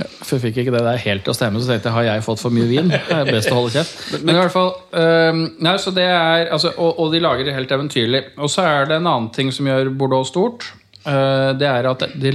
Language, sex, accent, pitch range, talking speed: English, male, Norwegian, 110-140 Hz, 275 wpm